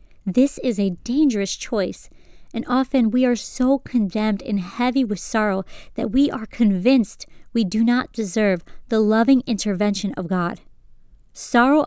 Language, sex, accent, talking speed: English, female, American, 145 wpm